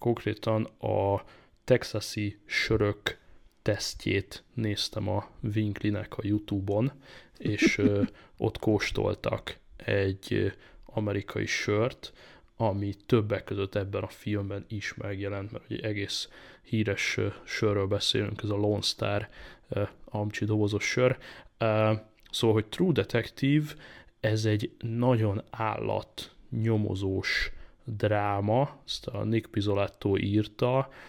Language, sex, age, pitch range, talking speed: Hungarian, male, 20-39, 100-115 Hz, 100 wpm